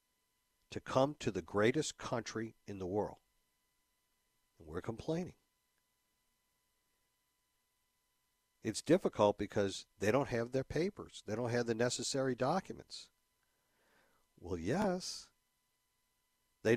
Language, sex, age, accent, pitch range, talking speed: English, male, 60-79, American, 105-145 Hz, 105 wpm